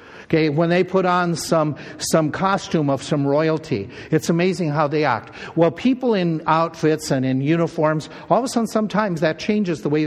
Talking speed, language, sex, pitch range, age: 190 wpm, English, male, 150-195 Hz, 60-79